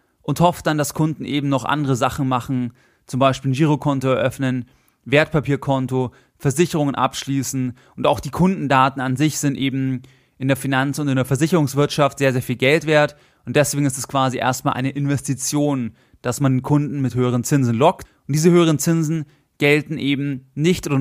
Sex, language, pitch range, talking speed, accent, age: male, German, 130-165 Hz, 175 wpm, German, 30-49